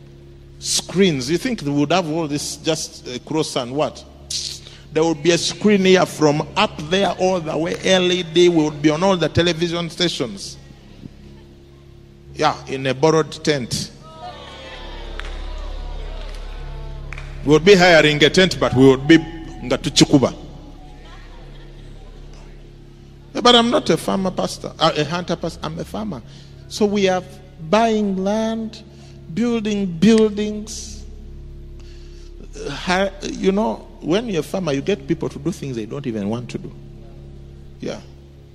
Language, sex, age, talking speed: English, male, 50-69, 135 wpm